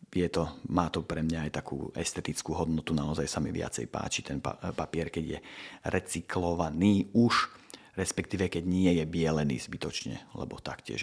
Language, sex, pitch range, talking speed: Slovak, male, 85-95 Hz, 150 wpm